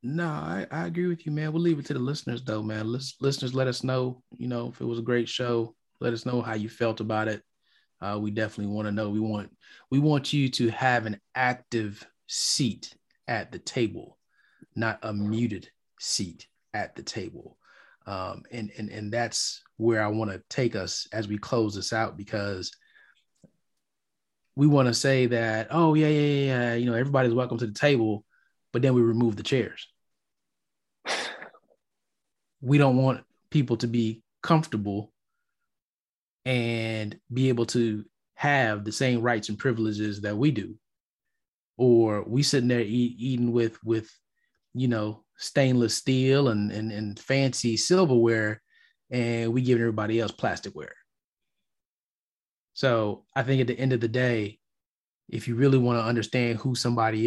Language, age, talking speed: English, 20-39, 170 wpm